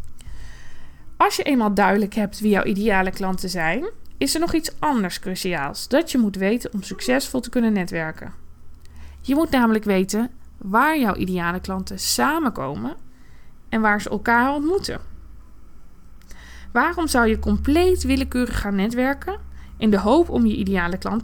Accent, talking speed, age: Dutch, 150 wpm, 20-39